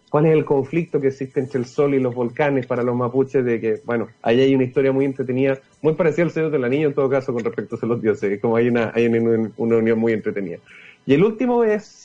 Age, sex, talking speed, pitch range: 30-49, male, 255 wpm, 125-150 Hz